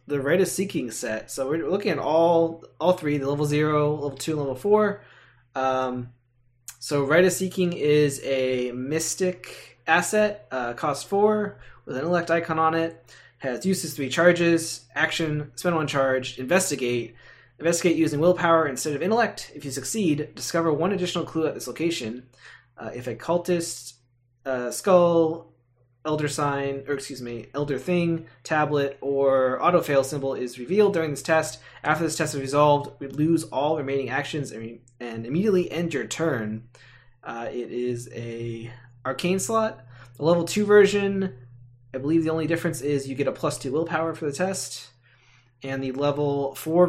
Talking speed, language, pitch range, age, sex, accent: 165 wpm, English, 125-165 Hz, 20-39, male, American